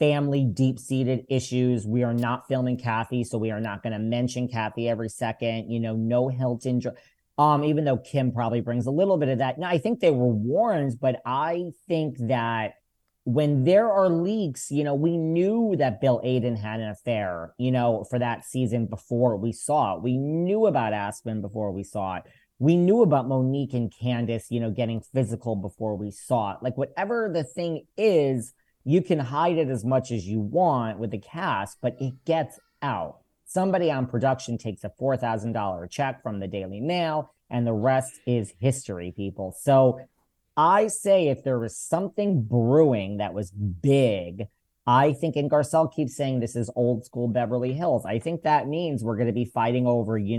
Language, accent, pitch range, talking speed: English, American, 115-140 Hz, 190 wpm